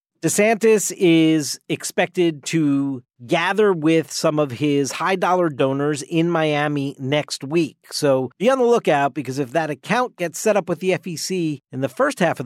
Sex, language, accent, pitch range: male, English, American, 140-175 Hz